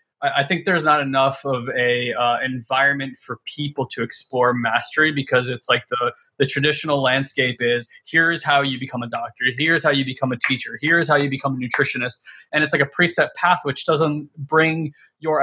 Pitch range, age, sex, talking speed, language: 130-160 Hz, 20-39, male, 195 wpm, English